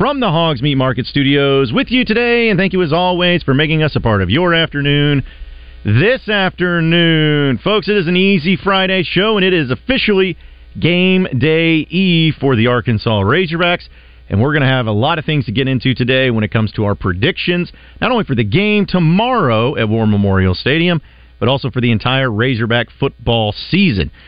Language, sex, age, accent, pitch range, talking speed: English, male, 40-59, American, 110-170 Hz, 195 wpm